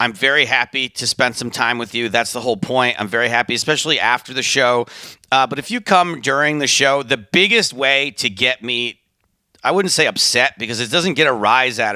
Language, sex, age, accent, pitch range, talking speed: English, male, 40-59, American, 120-160 Hz, 225 wpm